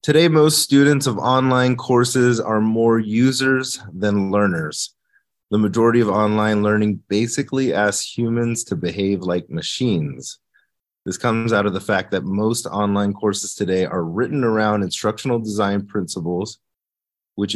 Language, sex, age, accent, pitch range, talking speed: English, male, 30-49, American, 95-120 Hz, 140 wpm